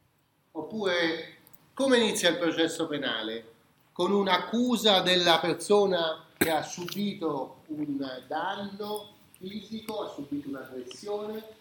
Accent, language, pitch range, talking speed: native, Italian, 150-200 Hz, 105 wpm